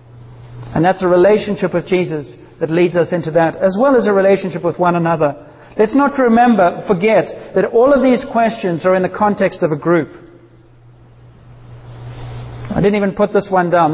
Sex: male